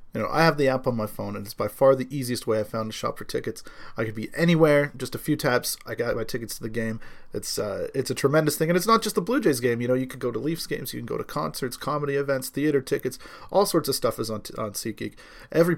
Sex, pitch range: male, 125-170 Hz